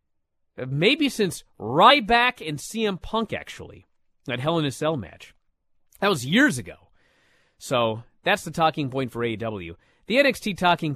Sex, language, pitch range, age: male, English, 105-165 Hz, 30-49